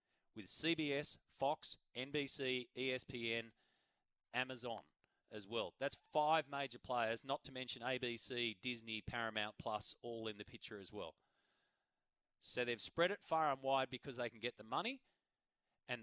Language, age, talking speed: English, 30-49, 145 wpm